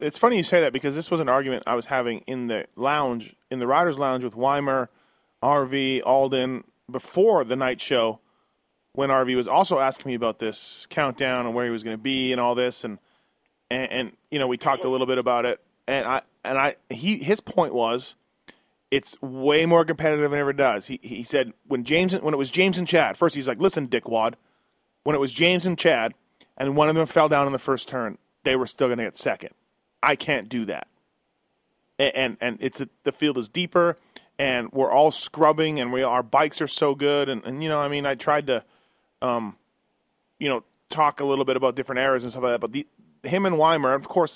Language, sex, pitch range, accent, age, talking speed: English, male, 125-150 Hz, American, 30-49, 225 wpm